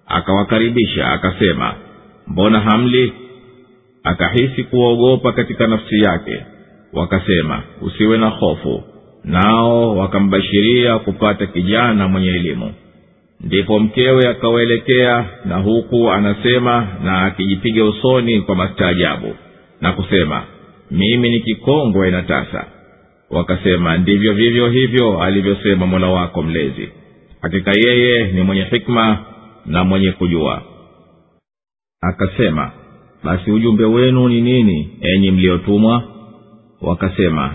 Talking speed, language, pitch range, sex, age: 100 wpm, Swahili, 95-115 Hz, male, 50-69